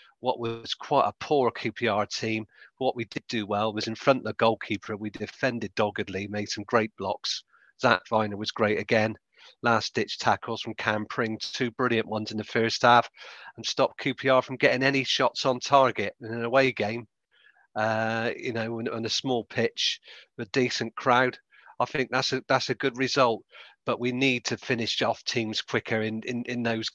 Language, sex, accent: English, male, British